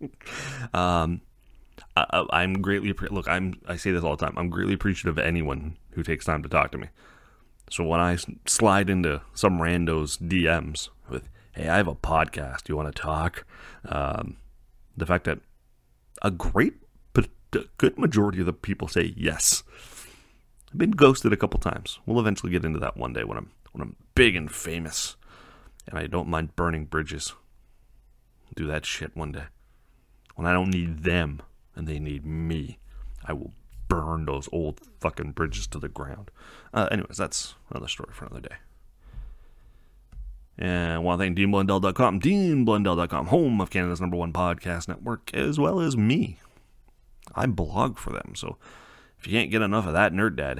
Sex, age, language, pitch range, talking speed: male, 30-49, English, 80-100 Hz, 175 wpm